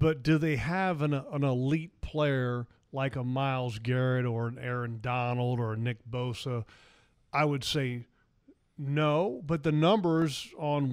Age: 40-59